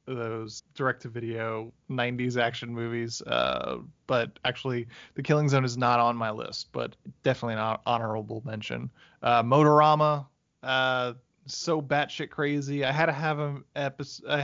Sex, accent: male, American